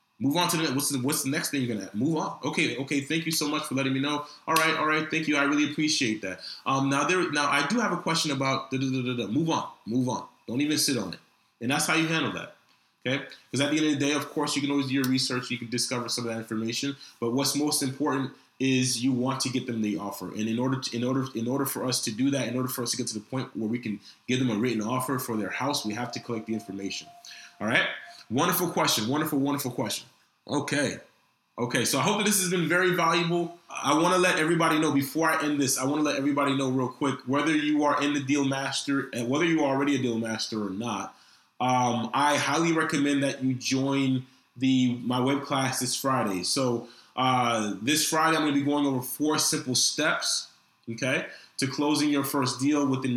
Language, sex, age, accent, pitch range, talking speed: English, male, 20-39, American, 125-150 Hz, 255 wpm